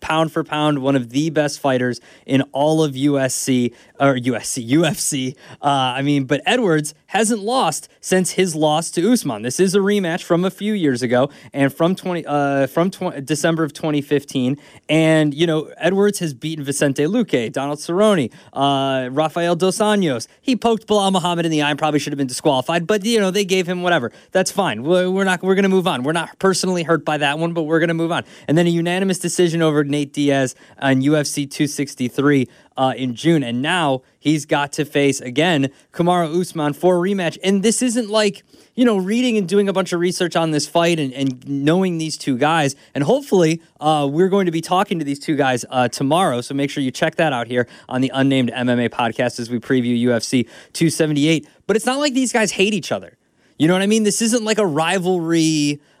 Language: English